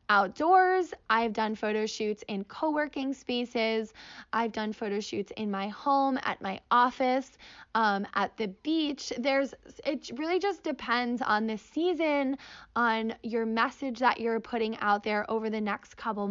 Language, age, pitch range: English, 10-29, 215-270 Hz